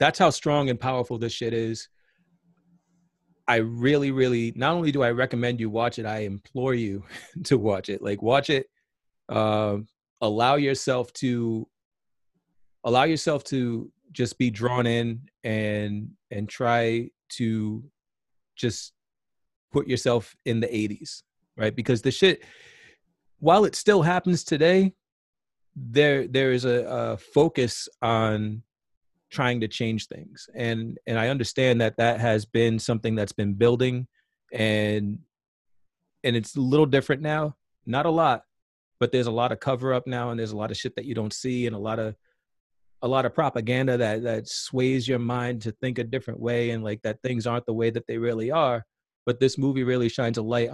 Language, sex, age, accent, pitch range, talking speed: English, male, 30-49, American, 115-130 Hz, 175 wpm